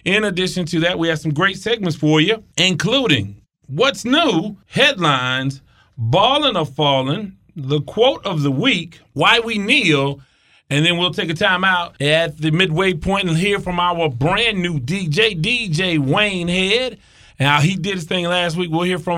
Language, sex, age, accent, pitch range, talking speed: English, male, 30-49, American, 155-200 Hz, 180 wpm